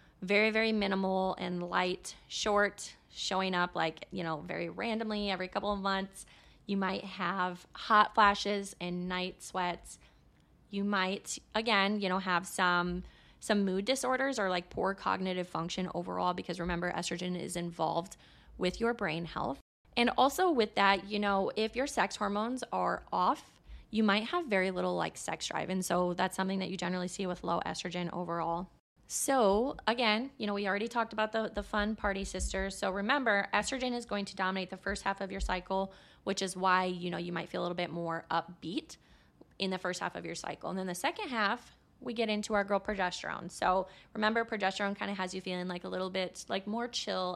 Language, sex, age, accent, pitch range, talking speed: English, female, 20-39, American, 180-210 Hz, 195 wpm